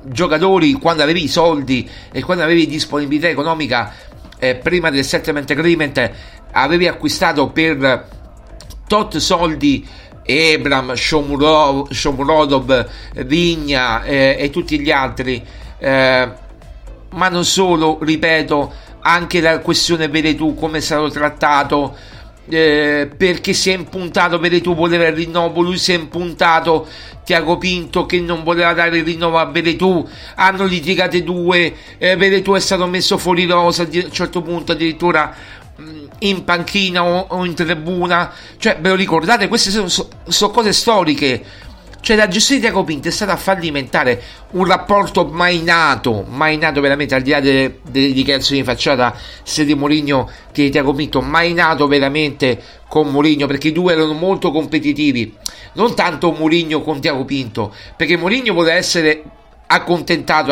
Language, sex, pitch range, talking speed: Italian, male, 140-175 Hz, 145 wpm